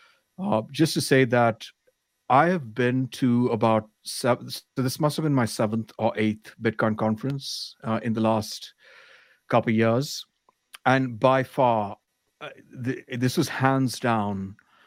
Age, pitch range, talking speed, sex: 50-69, 110-125 Hz, 155 wpm, male